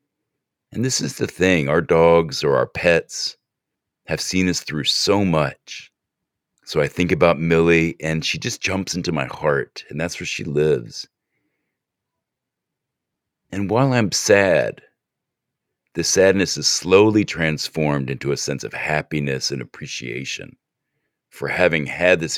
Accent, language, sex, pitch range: American, English, male, 75-95 Hz